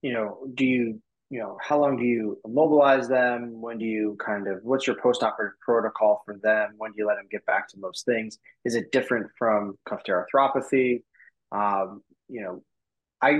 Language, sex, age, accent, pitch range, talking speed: English, male, 20-39, American, 110-135 Hz, 190 wpm